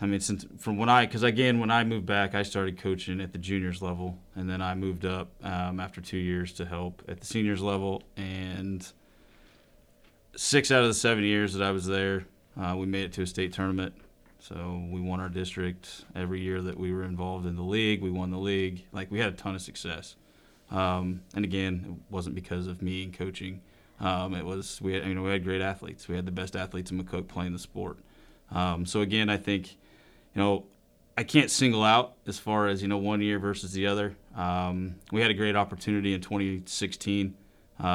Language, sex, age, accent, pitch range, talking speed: English, male, 30-49, American, 90-100 Hz, 215 wpm